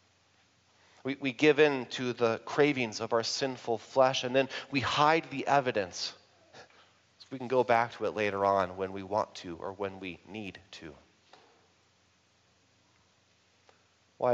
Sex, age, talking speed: male, 30-49, 145 wpm